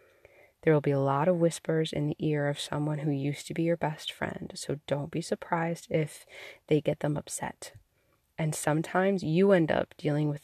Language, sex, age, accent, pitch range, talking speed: English, female, 20-39, American, 145-175 Hz, 200 wpm